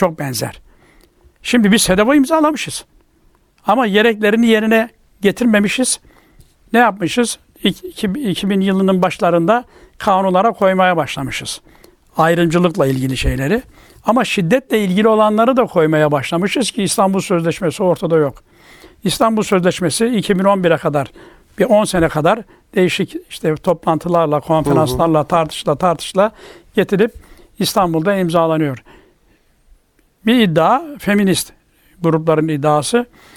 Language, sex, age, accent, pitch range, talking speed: Turkish, male, 60-79, native, 165-215 Hz, 100 wpm